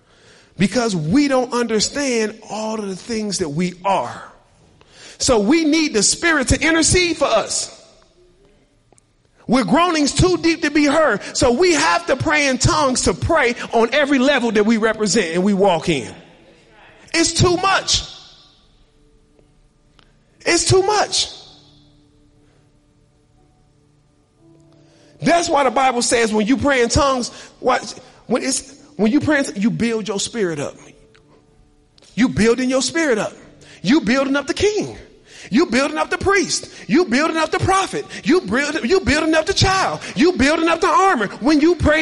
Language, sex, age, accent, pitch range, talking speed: English, male, 40-59, American, 210-325 Hz, 150 wpm